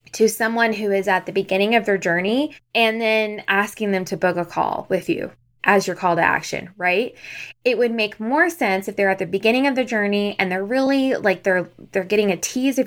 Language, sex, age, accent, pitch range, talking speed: English, female, 20-39, American, 185-230 Hz, 230 wpm